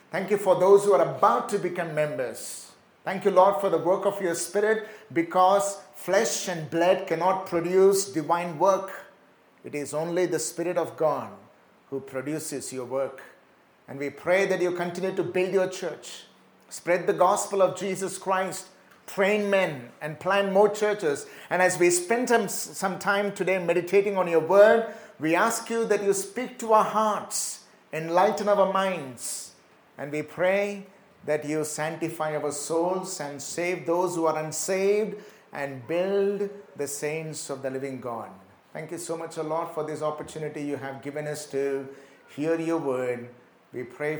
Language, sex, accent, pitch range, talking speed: English, male, Indian, 150-195 Hz, 170 wpm